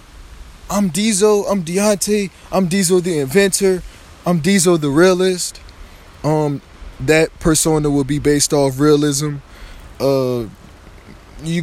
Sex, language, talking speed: male, English, 115 wpm